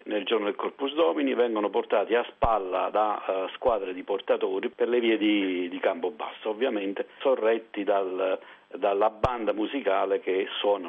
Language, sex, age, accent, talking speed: Italian, male, 50-69, native, 155 wpm